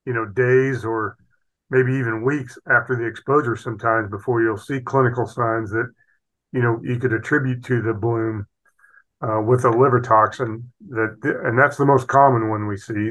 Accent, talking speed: American, 185 wpm